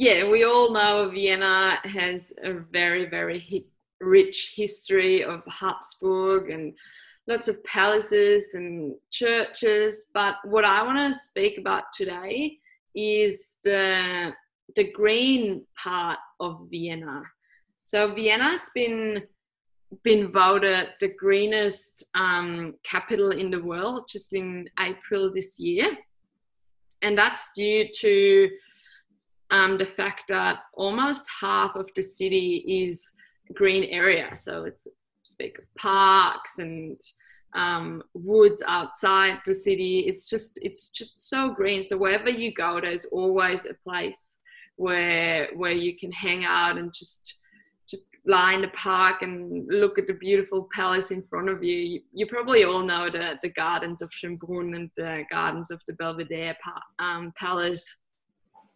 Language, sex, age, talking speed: English, female, 20-39, 135 wpm